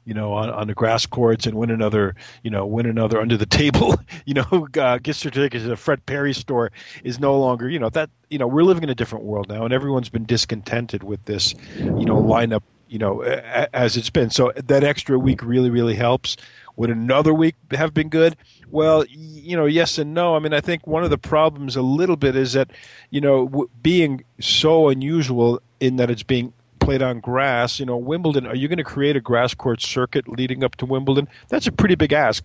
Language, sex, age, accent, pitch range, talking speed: English, male, 50-69, American, 120-145 Hz, 225 wpm